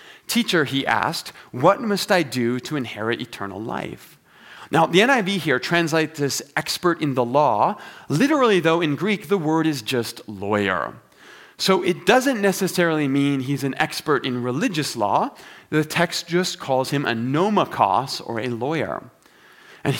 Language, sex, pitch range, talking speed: English, male, 130-180 Hz, 155 wpm